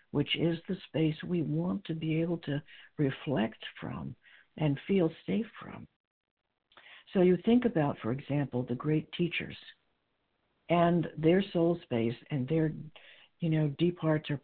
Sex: female